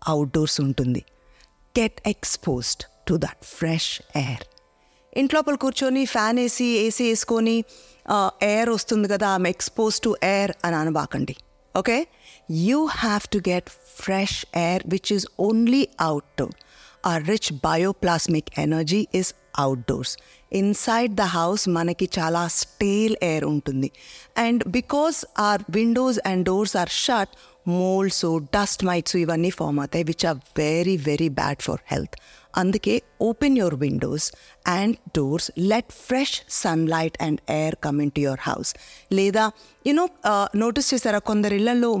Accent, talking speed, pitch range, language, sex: native, 130 wpm, 160-220 Hz, Telugu, female